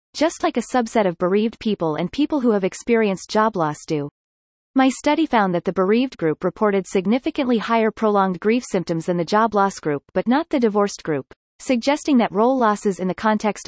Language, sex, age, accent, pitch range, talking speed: English, female, 30-49, American, 180-245 Hz, 195 wpm